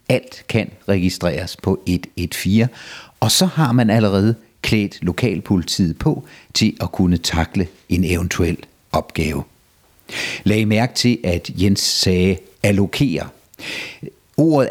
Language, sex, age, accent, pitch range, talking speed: Danish, male, 60-79, native, 90-130 Hz, 120 wpm